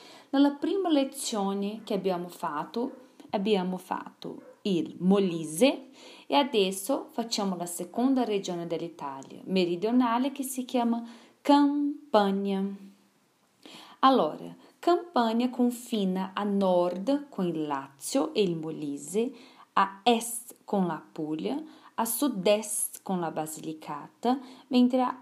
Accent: Brazilian